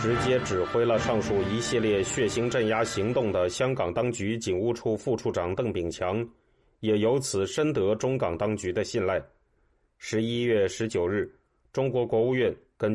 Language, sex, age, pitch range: Chinese, male, 30-49, 105-125 Hz